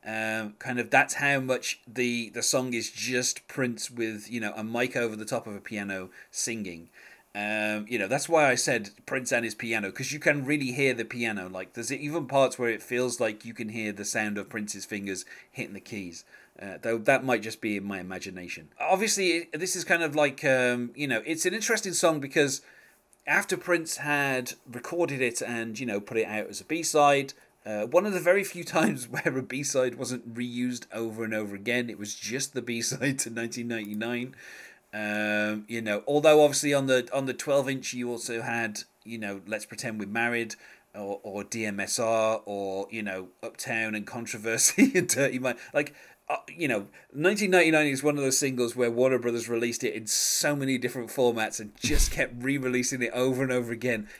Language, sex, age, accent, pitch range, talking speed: English, male, 30-49, British, 110-135 Hz, 210 wpm